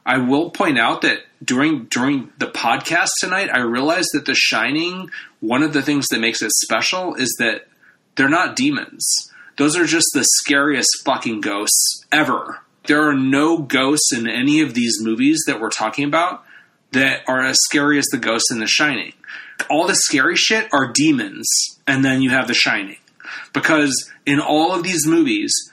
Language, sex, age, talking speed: English, male, 30-49, 180 wpm